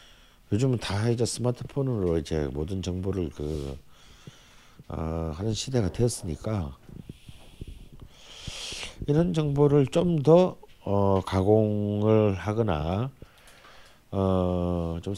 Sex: male